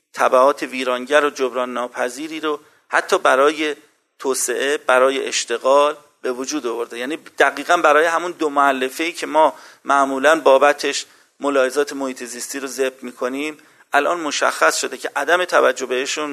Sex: male